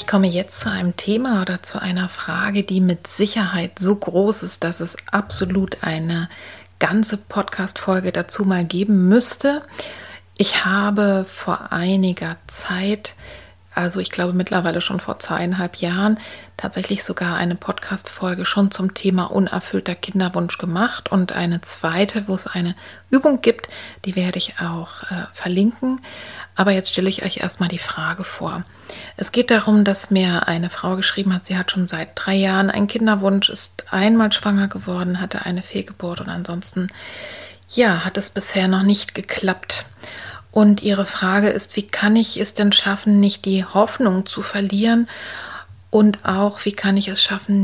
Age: 40-59